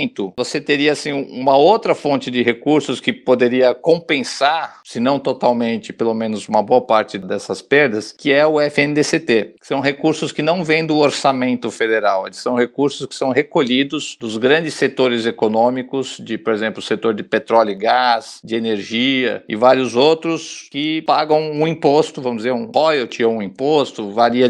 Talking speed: 170 wpm